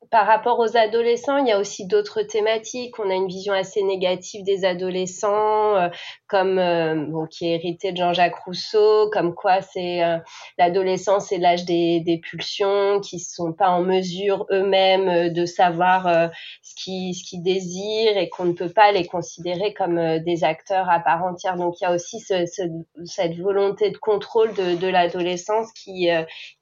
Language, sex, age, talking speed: French, female, 30-49, 190 wpm